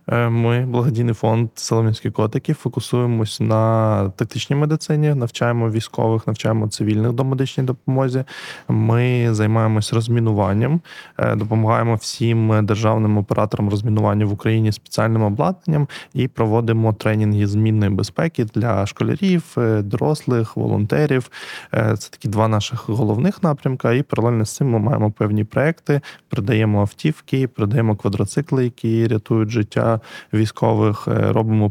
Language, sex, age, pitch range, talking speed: Ukrainian, male, 20-39, 110-125 Hz, 115 wpm